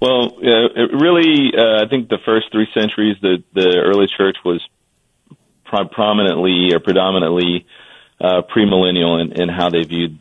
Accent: American